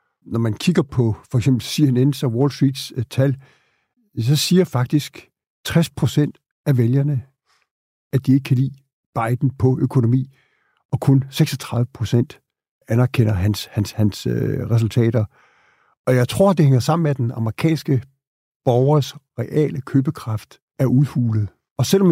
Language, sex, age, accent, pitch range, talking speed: Danish, male, 60-79, native, 120-145 Hz, 135 wpm